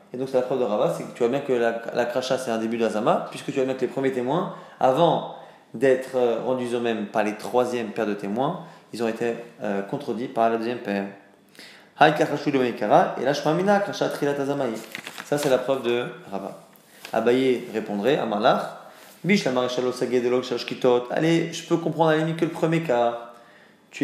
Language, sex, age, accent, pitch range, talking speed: French, male, 20-39, French, 115-145 Hz, 170 wpm